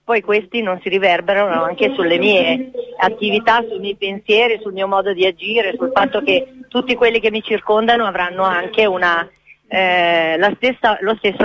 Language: Italian